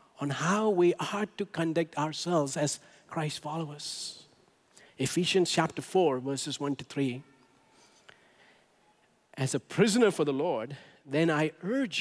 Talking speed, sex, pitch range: 130 wpm, male, 150-215 Hz